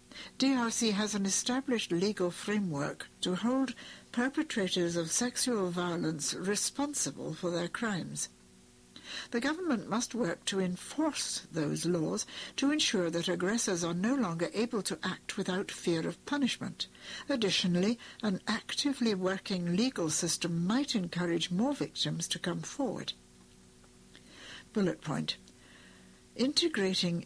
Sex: female